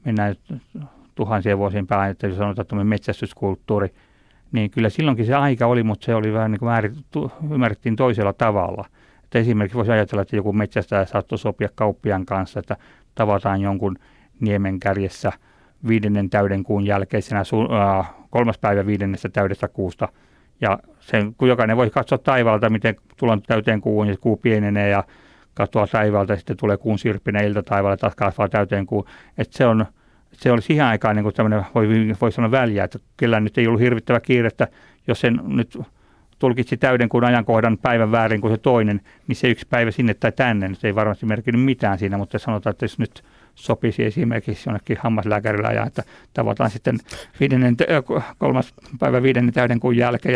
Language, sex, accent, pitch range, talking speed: Finnish, male, native, 100-120 Hz, 170 wpm